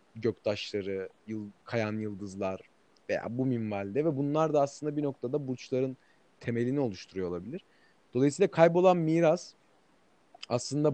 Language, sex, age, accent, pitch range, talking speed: Turkish, male, 40-59, native, 120-165 Hz, 110 wpm